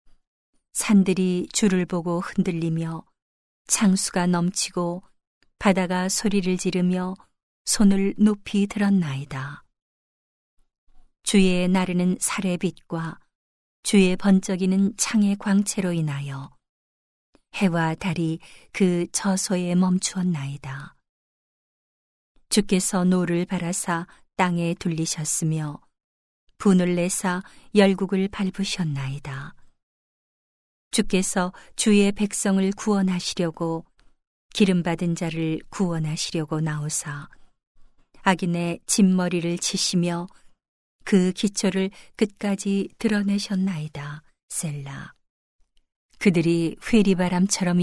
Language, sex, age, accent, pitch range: Korean, female, 40-59, native, 165-195 Hz